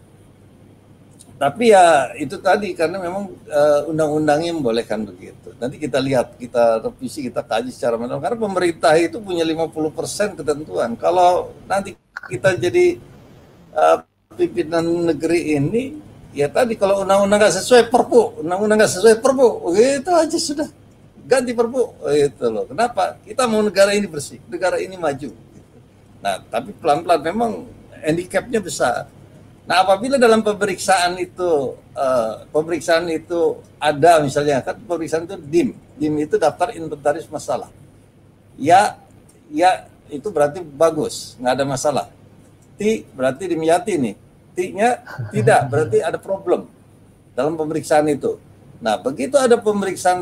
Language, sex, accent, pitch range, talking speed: Indonesian, male, native, 145-215 Hz, 135 wpm